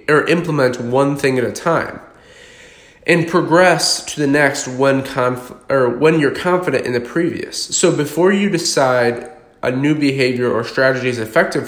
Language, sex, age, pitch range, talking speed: English, male, 20-39, 120-160 Hz, 165 wpm